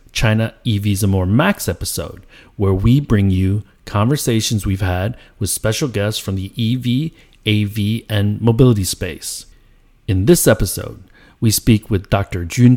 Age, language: 40-59, English